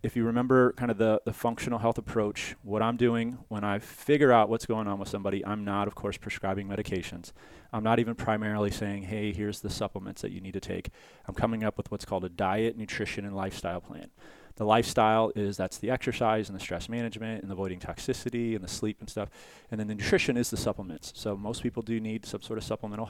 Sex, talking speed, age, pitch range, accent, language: male, 230 wpm, 30-49, 100-115 Hz, American, English